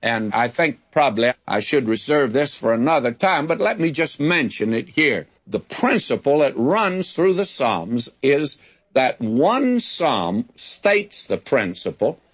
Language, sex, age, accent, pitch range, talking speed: English, male, 60-79, American, 125-175 Hz, 155 wpm